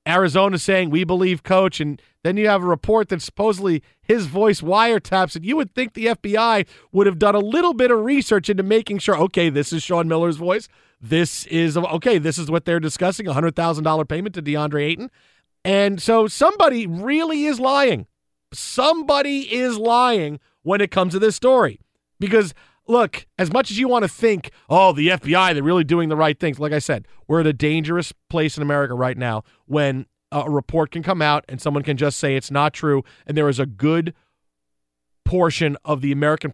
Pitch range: 150-205 Hz